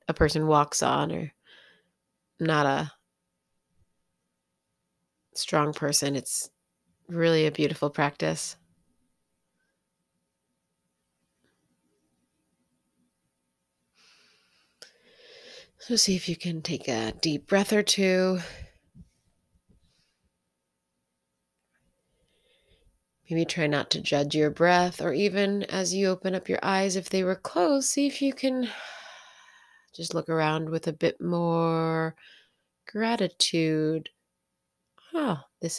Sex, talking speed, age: female, 95 wpm, 30-49